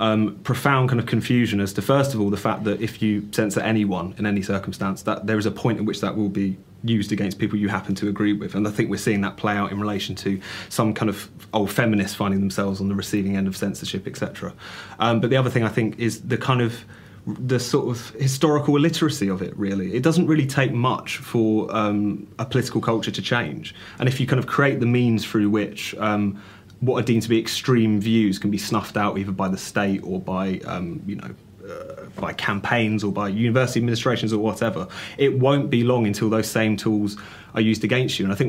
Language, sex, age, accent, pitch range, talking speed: English, male, 30-49, British, 100-115 Hz, 235 wpm